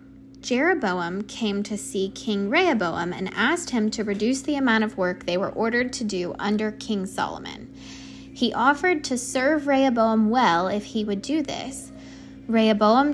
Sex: female